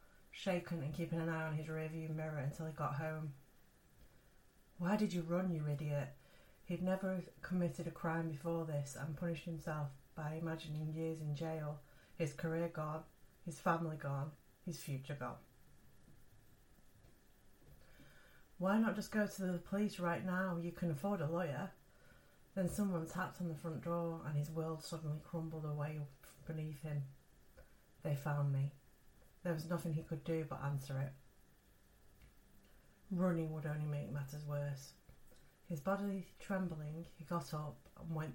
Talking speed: 155 wpm